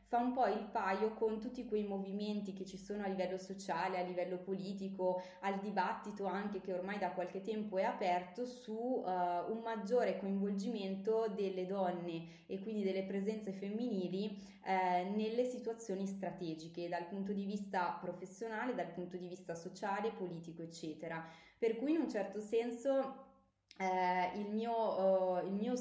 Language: Italian